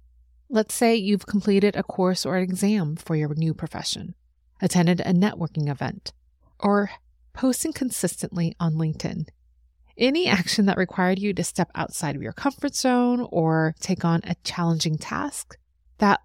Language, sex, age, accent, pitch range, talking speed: English, female, 30-49, American, 155-205 Hz, 150 wpm